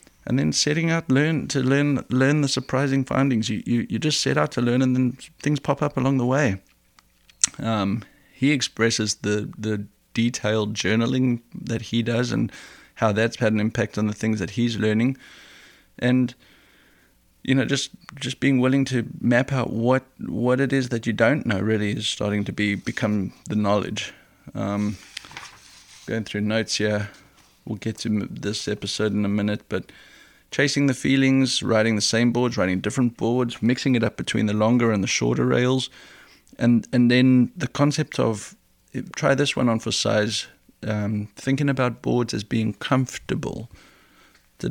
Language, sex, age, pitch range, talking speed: English, male, 20-39, 105-130 Hz, 175 wpm